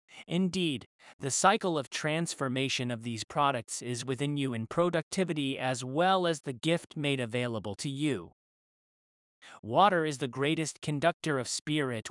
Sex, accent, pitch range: male, American, 120-160 Hz